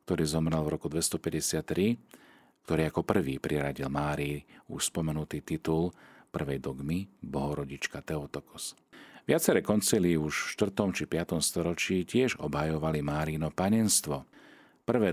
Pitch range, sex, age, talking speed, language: 75-95 Hz, male, 40-59, 120 wpm, Slovak